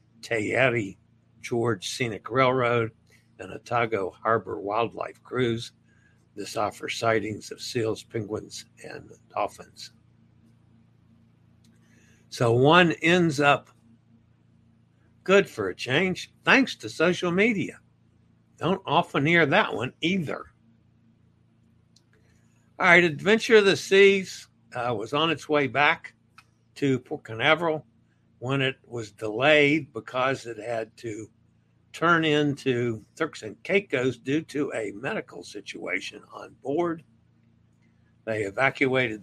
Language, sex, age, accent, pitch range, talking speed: English, male, 60-79, American, 115-140 Hz, 110 wpm